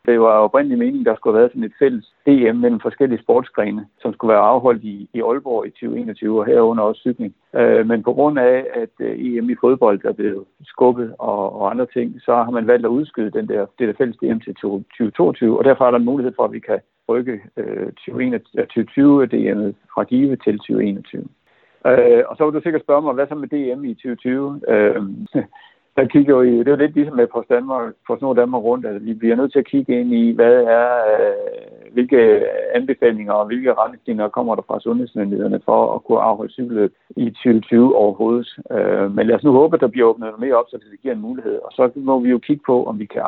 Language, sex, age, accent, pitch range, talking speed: Danish, male, 60-79, native, 115-145 Hz, 220 wpm